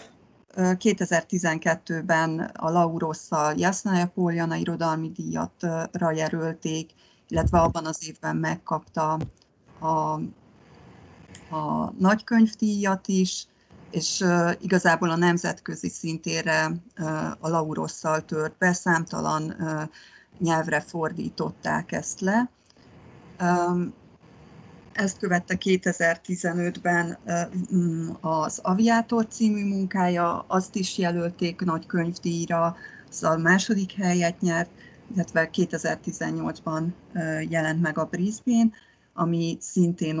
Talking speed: 80 wpm